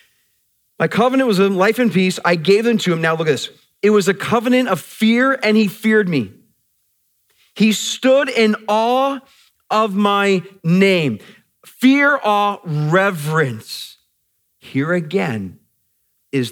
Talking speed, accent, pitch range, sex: 140 wpm, American, 115-165 Hz, male